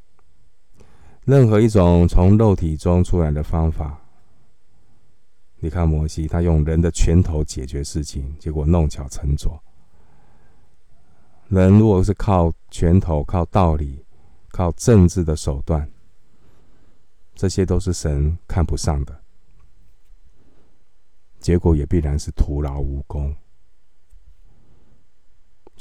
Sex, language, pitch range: male, Chinese, 75-90 Hz